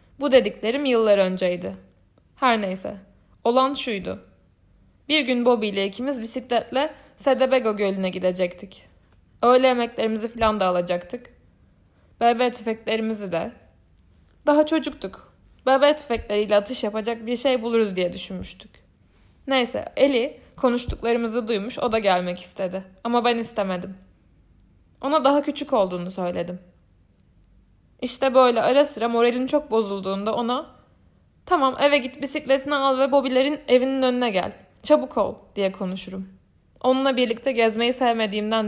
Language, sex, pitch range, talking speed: Turkish, female, 180-255 Hz, 120 wpm